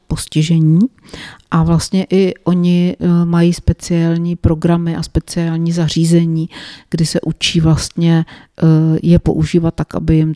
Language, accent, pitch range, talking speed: Czech, native, 160-175 Hz, 115 wpm